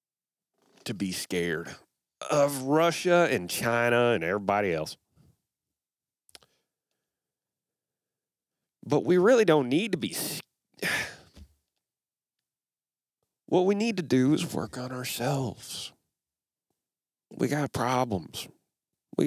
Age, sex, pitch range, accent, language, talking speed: 40-59, male, 95-155 Hz, American, English, 90 wpm